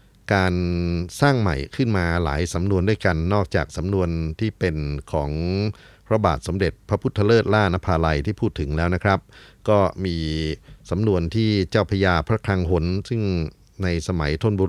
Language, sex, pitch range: Thai, male, 85-105 Hz